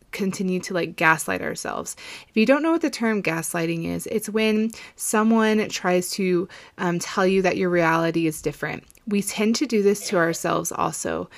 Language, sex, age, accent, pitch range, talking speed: English, female, 20-39, American, 170-215 Hz, 185 wpm